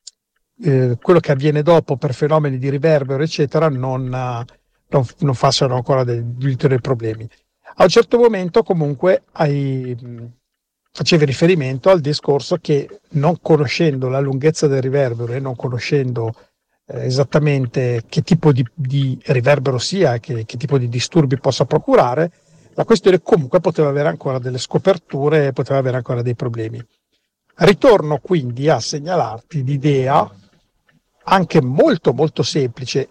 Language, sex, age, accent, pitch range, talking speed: Italian, male, 50-69, native, 130-165 Hz, 135 wpm